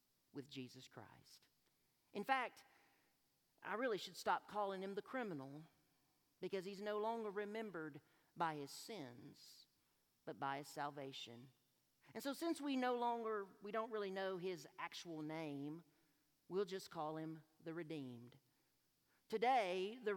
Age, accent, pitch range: 50-69, American, 150-225 Hz